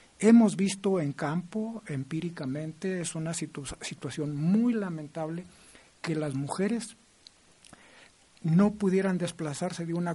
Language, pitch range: Spanish, 145-195 Hz